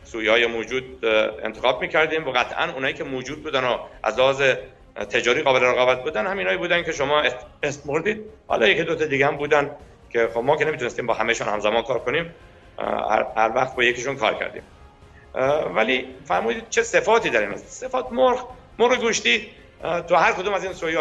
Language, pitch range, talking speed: Persian, 120-175 Hz, 170 wpm